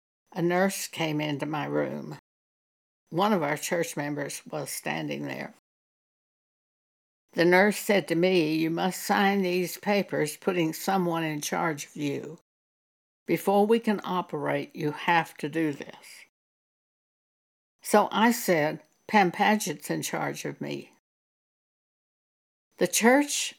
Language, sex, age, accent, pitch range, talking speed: English, female, 60-79, American, 160-210 Hz, 125 wpm